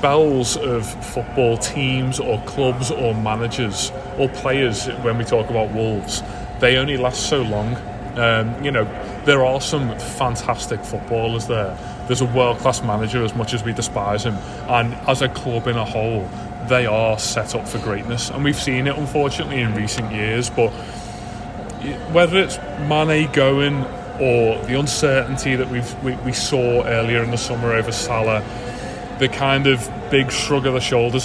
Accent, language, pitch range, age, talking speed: British, English, 110-130 Hz, 30-49, 165 wpm